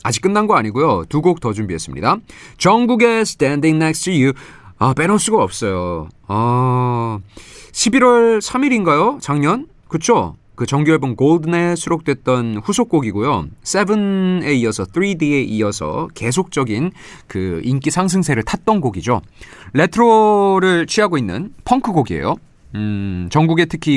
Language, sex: Korean, male